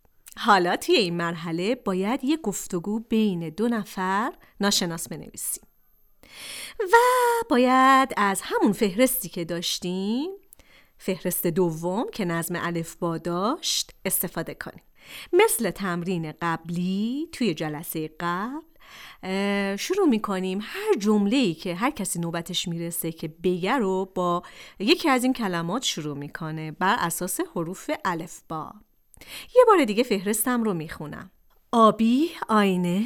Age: 40-59